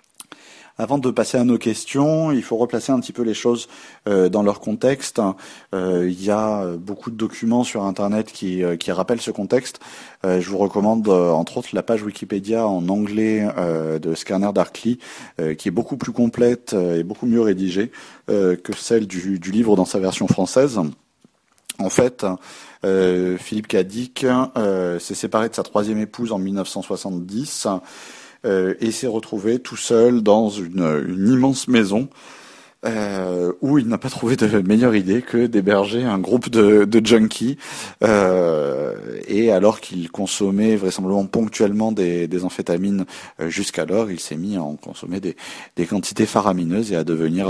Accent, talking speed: French, 170 wpm